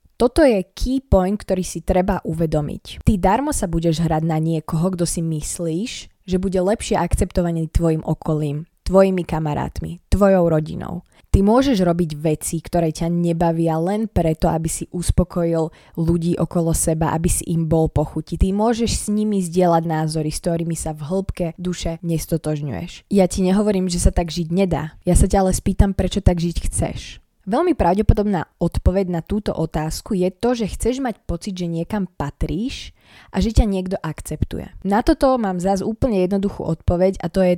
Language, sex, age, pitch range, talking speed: Slovak, female, 20-39, 165-195 Hz, 170 wpm